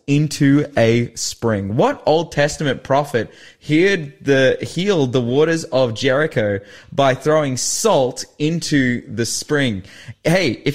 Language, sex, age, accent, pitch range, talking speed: English, male, 20-39, Australian, 110-140 Hz, 125 wpm